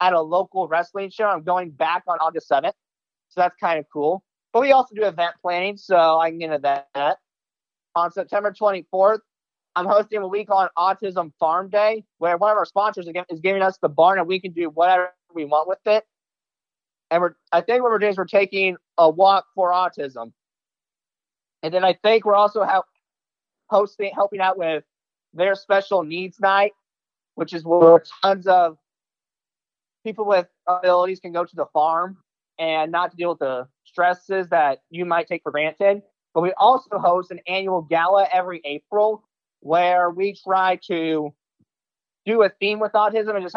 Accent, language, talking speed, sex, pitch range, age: American, English, 180 wpm, male, 170-205 Hz, 30-49